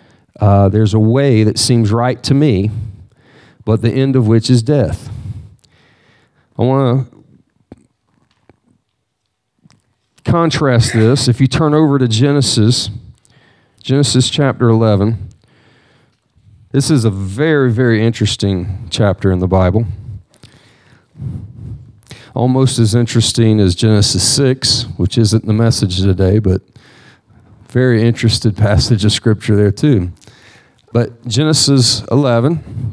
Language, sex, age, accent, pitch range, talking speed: English, male, 50-69, American, 110-130 Hz, 115 wpm